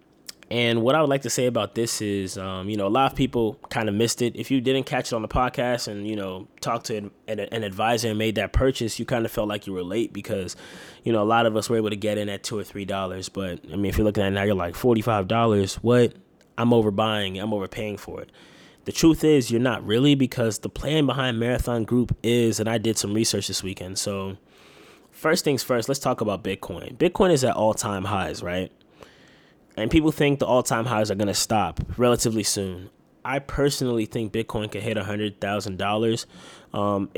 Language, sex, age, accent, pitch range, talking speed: English, male, 10-29, American, 105-125 Hz, 230 wpm